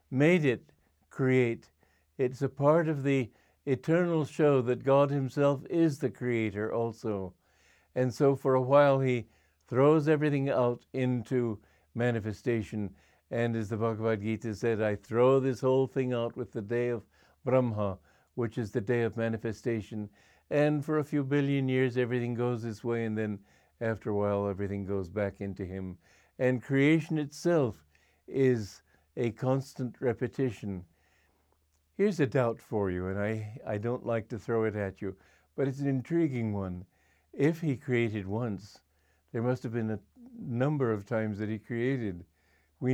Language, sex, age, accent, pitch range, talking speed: English, male, 60-79, American, 100-135 Hz, 160 wpm